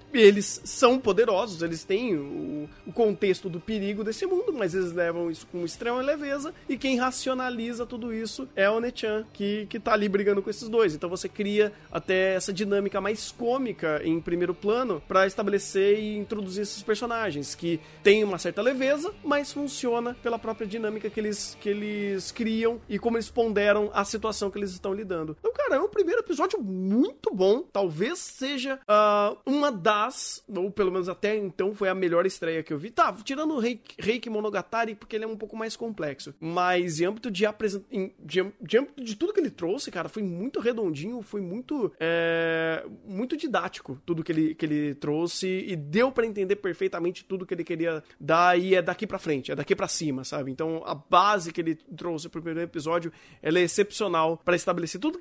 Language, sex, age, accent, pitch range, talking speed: Portuguese, male, 30-49, Brazilian, 180-235 Hz, 195 wpm